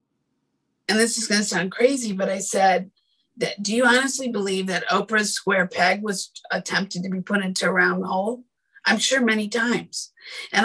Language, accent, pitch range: English, American, 195-255 Hz